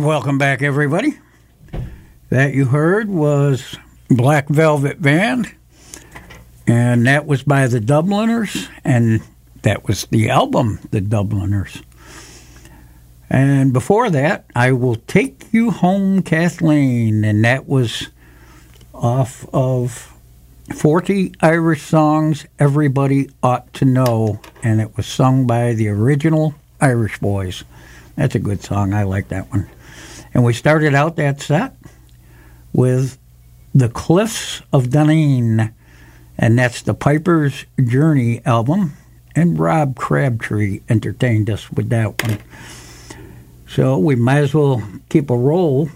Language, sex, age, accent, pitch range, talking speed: English, male, 60-79, American, 105-150 Hz, 125 wpm